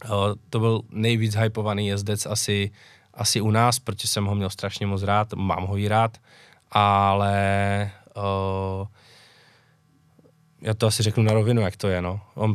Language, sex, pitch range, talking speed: Czech, male, 100-115 Hz, 165 wpm